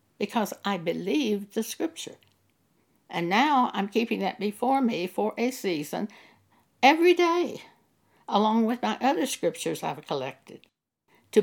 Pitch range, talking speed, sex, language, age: 190-250 Hz, 130 wpm, female, English, 60-79